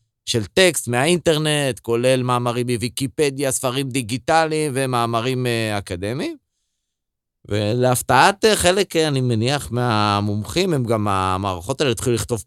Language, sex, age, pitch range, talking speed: Russian, male, 30-49, 110-160 Hz, 100 wpm